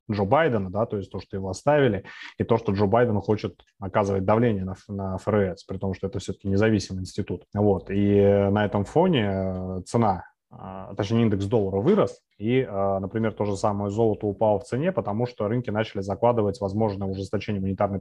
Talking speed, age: 180 wpm, 20-39